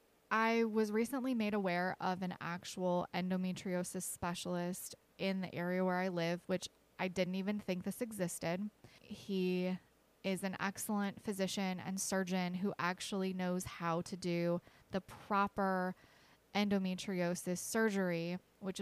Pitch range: 180-200 Hz